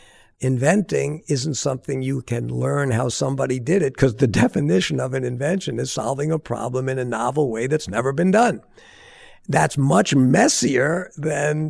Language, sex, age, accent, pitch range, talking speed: English, male, 60-79, American, 125-155 Hz, 165 wpm